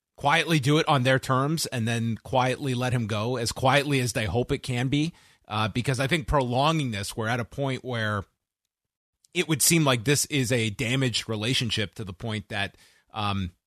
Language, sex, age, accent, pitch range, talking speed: English, male, 30-49, American, 110-140 Hz, 200 wpm